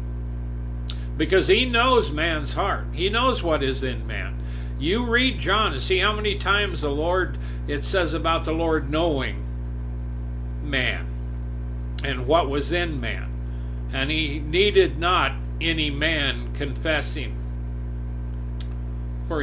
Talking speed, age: 125 wpm, 60-79